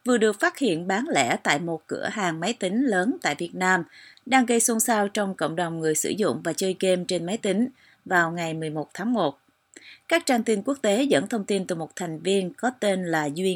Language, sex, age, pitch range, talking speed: Vietnamese, female, 30-49, 180-230 Hz, 235 wpm